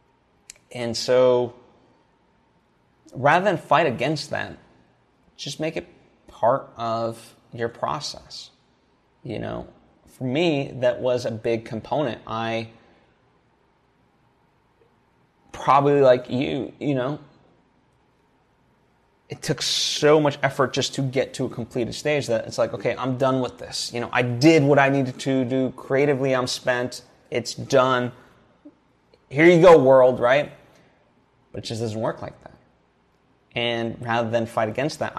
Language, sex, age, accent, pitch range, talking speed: English, male, 30-49, American, 115-135 Hz, 140 wpm